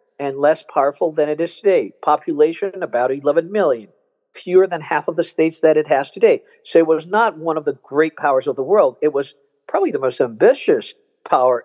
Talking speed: 205 wpm